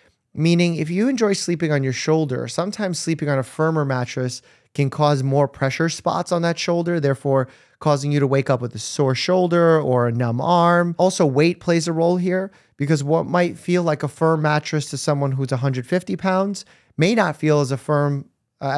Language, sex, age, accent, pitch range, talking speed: English, male, 30-49, American, 130-160 Hz, 200 wpm